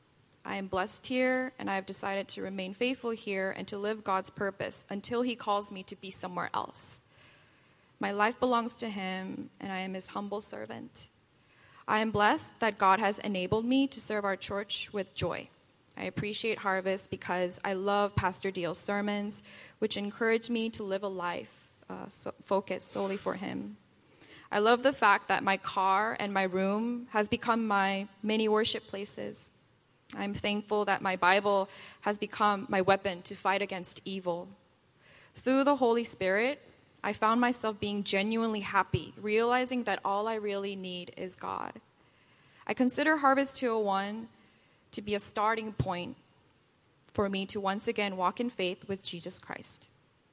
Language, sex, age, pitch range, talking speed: English, female, 10-29, 190-225 Hz, 165 wpm